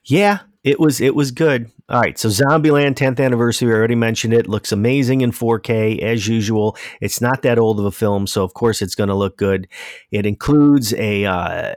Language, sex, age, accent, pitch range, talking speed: English, male, 40-59, American, 100-120 Hz, 205 wpm